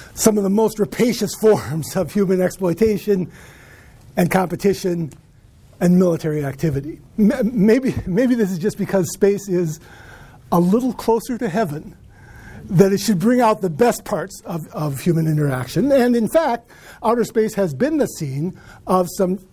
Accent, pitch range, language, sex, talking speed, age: American, 175-220 Hz, English, male, 155 wpm, 50-69